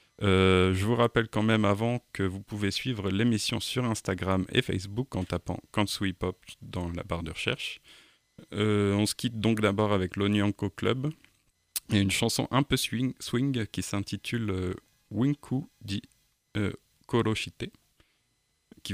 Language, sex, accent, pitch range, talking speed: French, male, French, 95-110 Hz, 155 wpm